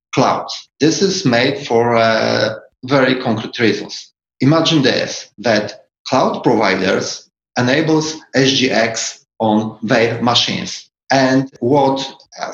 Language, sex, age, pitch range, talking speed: English, male, 40-59, 115-145 Hz, 105 wpm